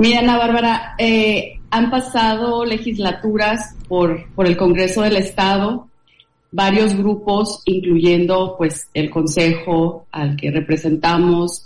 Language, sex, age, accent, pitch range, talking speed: Spanish, female, 30-49, Mexican, 160-195 Hz, 115 wpm